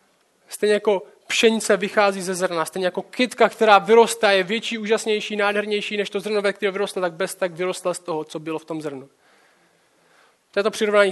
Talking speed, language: 195 wpm, Czech